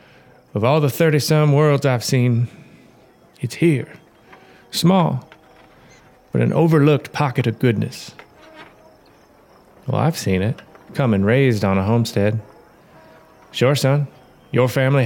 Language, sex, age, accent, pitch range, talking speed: English, male, 30-49, American, 105-135 Hz, 120 wpm